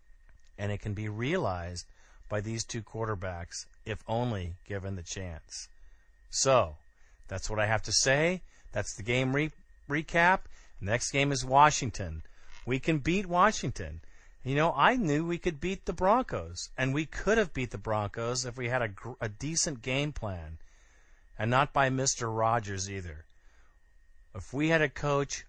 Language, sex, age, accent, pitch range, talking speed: English, male, 40-59, American, 90-135 Hz, 160 wpm